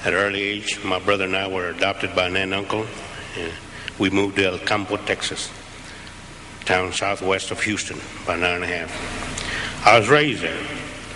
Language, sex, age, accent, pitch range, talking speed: English, male, 60-79, American, 95-115 Hz, 195 wpm